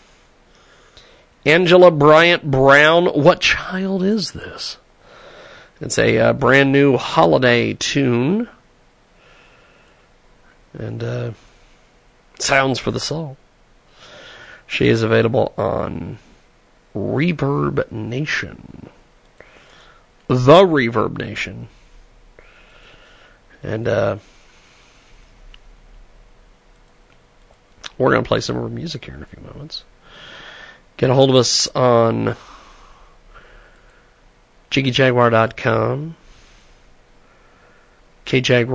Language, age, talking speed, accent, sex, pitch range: English, 40-59, 80 wpm, American, male, 115-155 Hz